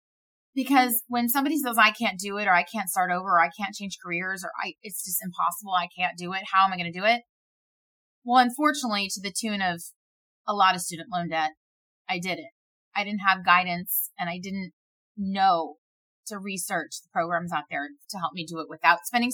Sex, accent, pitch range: female, American, 175-240 Hz